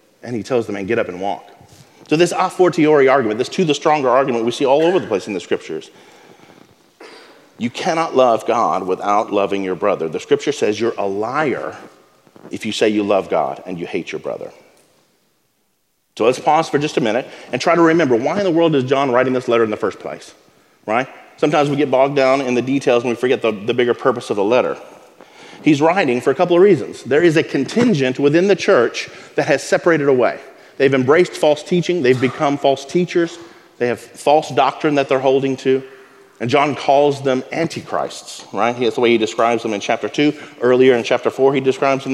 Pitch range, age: 125-165 Hz, 40-59